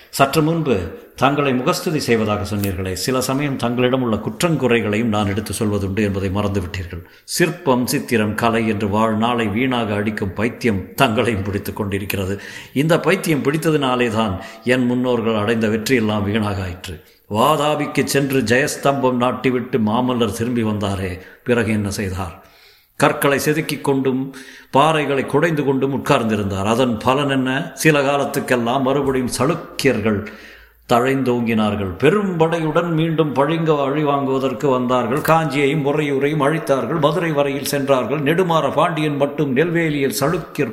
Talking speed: 115 wpm